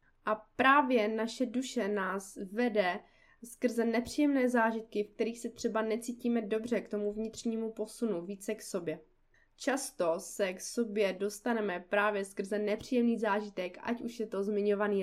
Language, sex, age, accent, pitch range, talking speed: Czech, female, 20-39, native, 205-245 Hz, 145 wpm